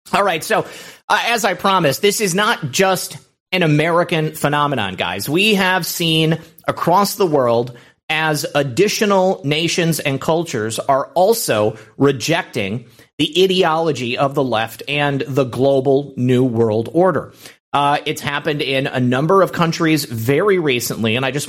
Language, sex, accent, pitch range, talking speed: English, male, American, 125-165 Hz, 150 wpm